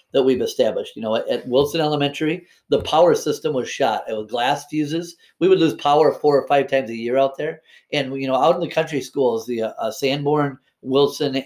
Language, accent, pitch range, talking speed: English, American, 130-175 Hz, 220 wpm